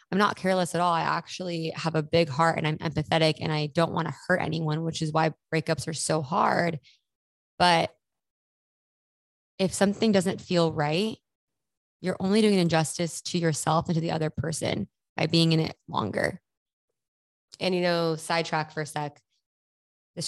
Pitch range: 155-170 Hz